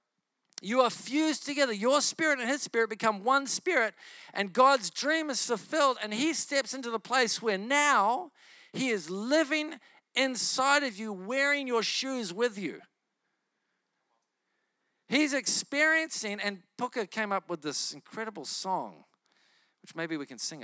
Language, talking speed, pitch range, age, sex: English, 150 wpm, 175-265 Hz, 50-69, male